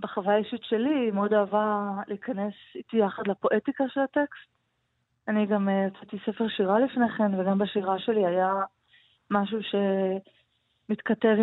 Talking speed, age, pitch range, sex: 130 wpm, 20-39, 200-225 Hz, female